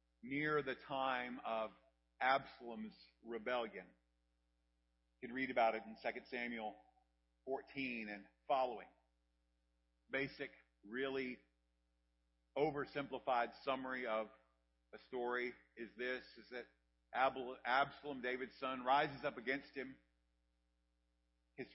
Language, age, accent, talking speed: English, 50-69, American, 100 wpm